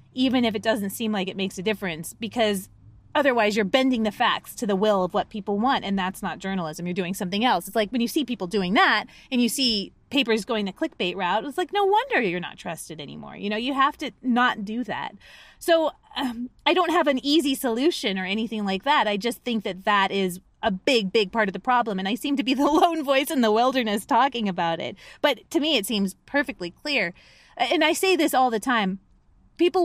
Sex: female